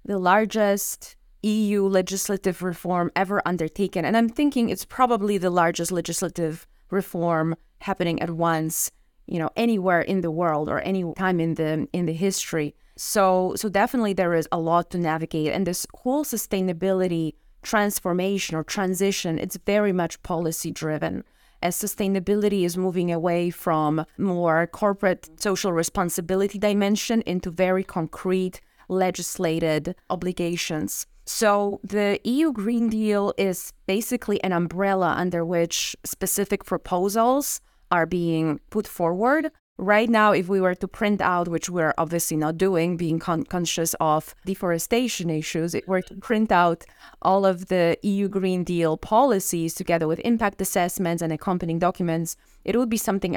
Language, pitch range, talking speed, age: English, 170-200 Hz, 145 wpm, 30-49